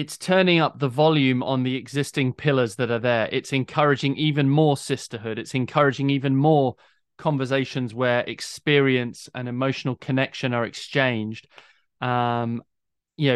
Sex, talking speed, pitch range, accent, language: male, 140 wpm, 130-150 Hz, British, French